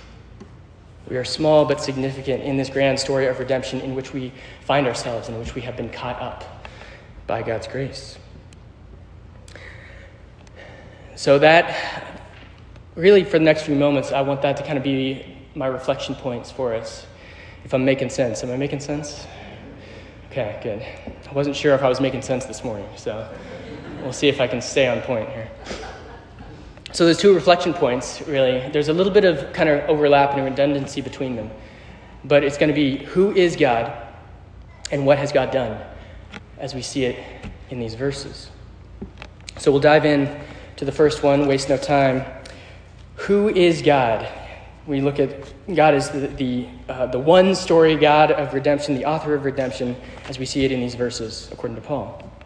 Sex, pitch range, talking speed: male, 110-145 Hz, 180 wpm